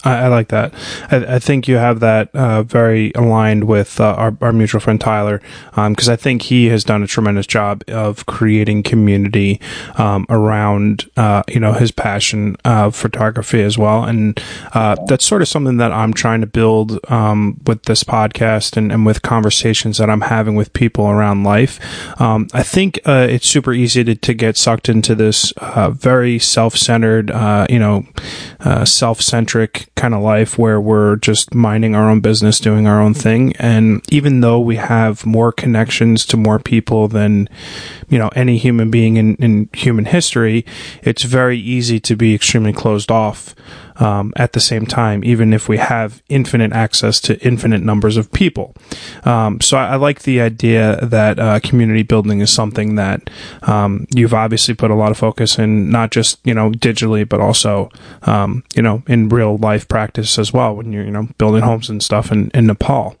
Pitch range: 105-120 Hz